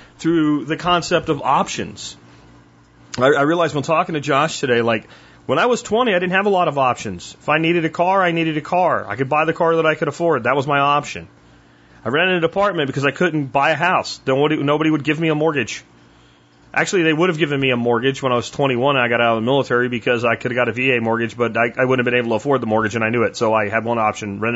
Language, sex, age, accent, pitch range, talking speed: English, male, 30-49, American, 115-155 Hz, 270 wpm